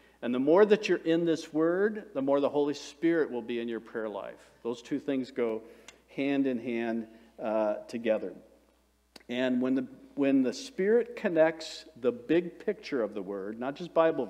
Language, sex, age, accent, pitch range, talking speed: English, male, 50-69, American, 115-160 Hz, 180 wpm